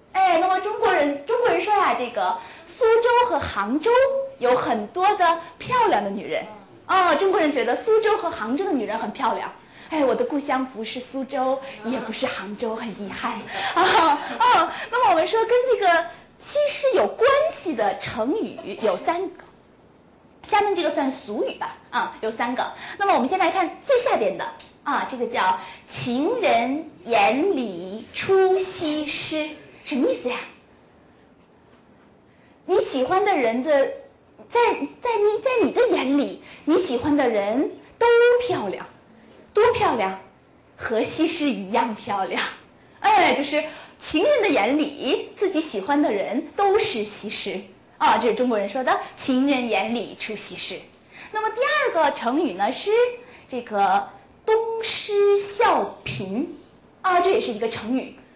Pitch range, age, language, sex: 250-405 Hz, 20-39, Korean, female